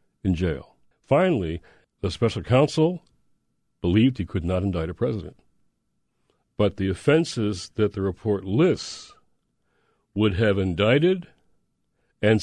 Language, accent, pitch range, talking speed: English, American, 95-130 Hz, 115 wpm